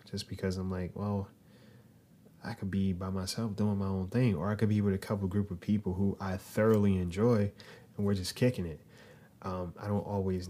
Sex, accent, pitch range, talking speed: male, American, 90-110 Hz, 210 wpm